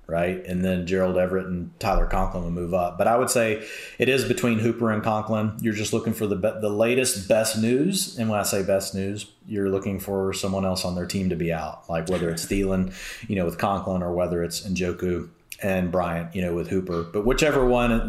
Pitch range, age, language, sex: 90-110 Hz, 30-49, English, male